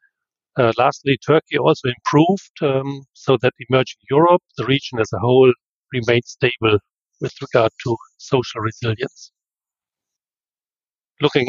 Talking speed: 120 wpm